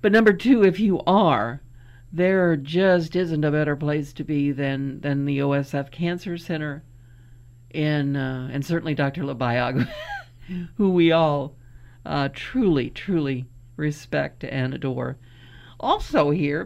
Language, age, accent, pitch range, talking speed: English, 50-69, American, 130-190 Hz, 135 wpm